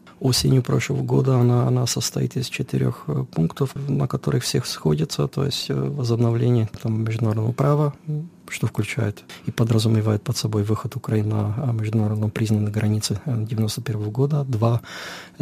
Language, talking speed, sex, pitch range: Russian, 130 wpm, male, 110-130 Hz